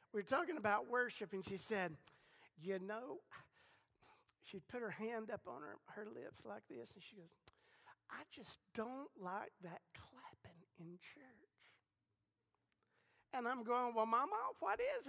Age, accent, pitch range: 50-69, American, 200-255 Hz